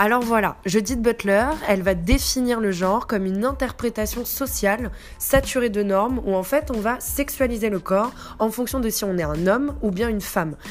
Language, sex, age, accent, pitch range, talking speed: French, female, 20-39, French, 190-235 Hz, 200 wpm